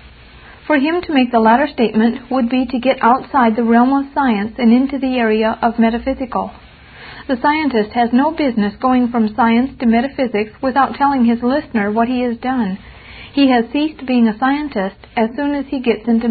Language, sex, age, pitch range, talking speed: English, female, 40-59, 225-270 Hz, 190 wpm